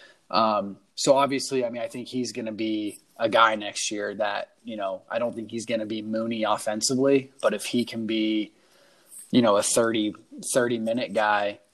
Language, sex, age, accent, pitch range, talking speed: English, male, 20-39, American, 105-125 Hz, 200 wpm